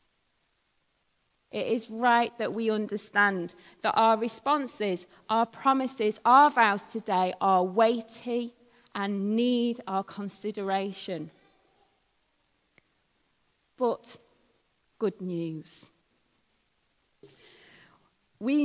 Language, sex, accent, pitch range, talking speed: English, female, British, 195-260 Hz, 75 wpm